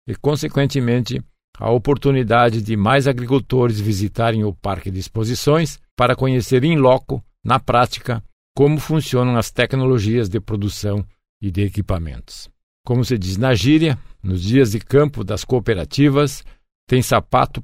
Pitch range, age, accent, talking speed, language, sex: 110-140 Hz, 50-69, Brazilian, 135 wpm, Portuguese, male